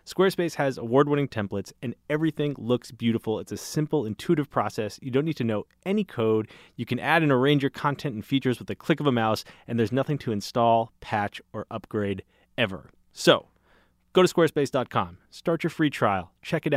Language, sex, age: English, male, 30-49